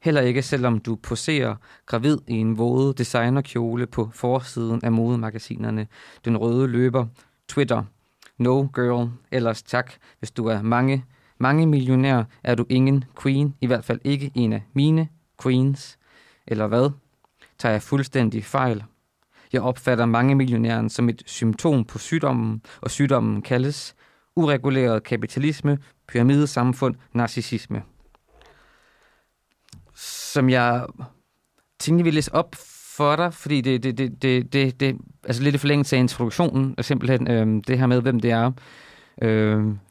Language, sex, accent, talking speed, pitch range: Danish, male, native, 135 wpm, 115-135 Hz